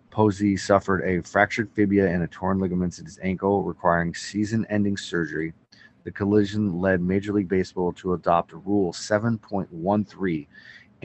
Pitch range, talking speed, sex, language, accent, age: 85-100 Hz, 135 wpm, male, English, American, 30-49